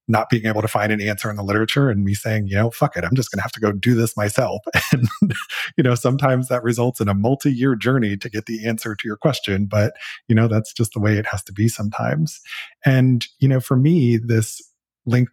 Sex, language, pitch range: male, English, 105-125 Hz